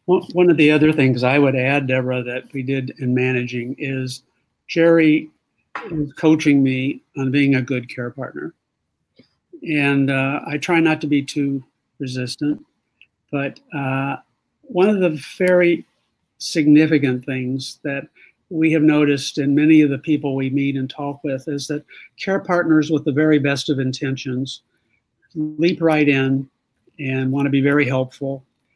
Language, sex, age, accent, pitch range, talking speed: English, male, 60-79, American, 135-155 Hz, 155 wpm